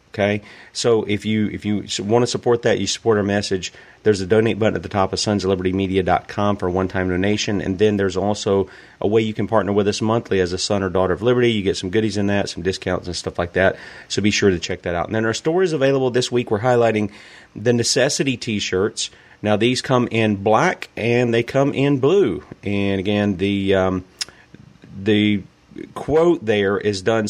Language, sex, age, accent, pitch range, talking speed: English, male, 30-49, American, 95-115 Hz, 220 wpm